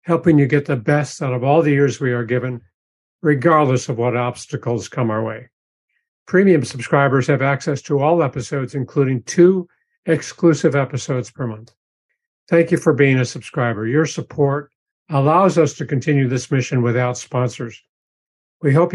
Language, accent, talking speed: English, American, 160 wpm